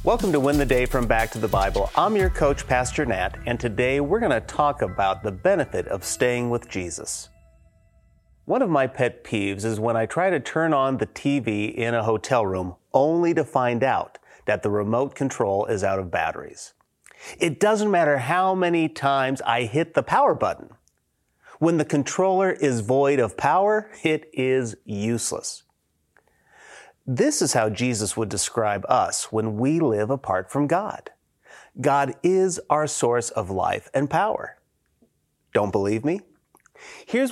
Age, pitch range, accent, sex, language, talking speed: 30-49, 105-155 Hz, American, male, English, 165 wpm